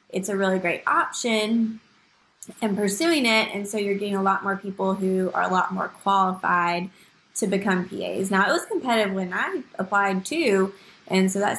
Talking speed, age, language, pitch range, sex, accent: 185 wpm, 20-39, English, 195-225 Hz, female, American